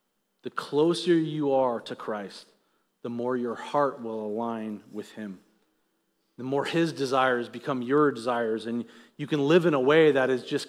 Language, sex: English, male